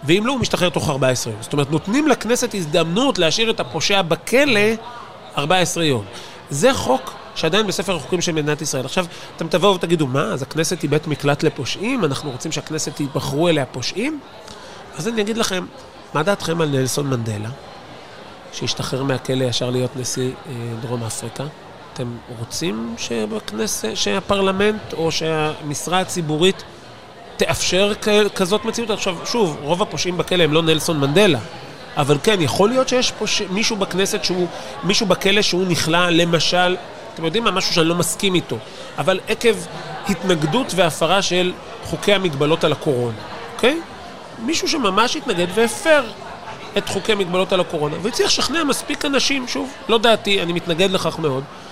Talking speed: 150 wpm